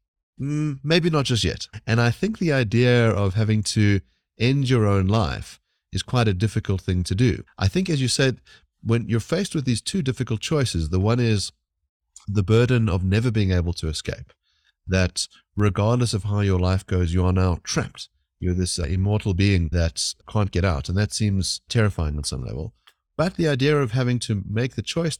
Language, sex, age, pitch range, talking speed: English, male, 30-49, 90-115 Hz, 195 wpm